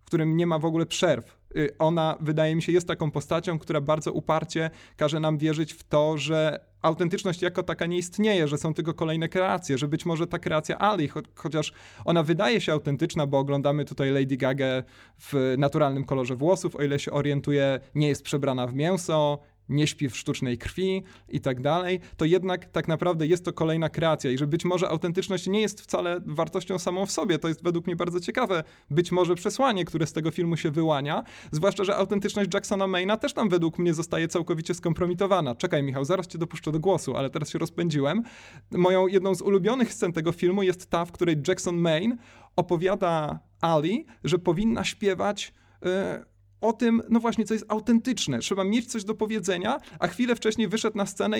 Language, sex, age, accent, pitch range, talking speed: Polish, male, 30-49, native, 155-195 Hz, 195 wpm